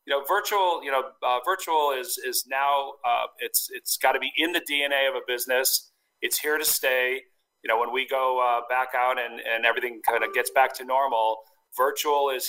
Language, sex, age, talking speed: English, male, 40-59, 215 wpm